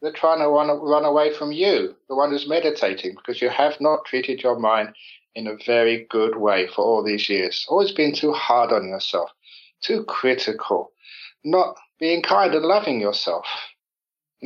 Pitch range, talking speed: 120-150 Hz, 180 wpm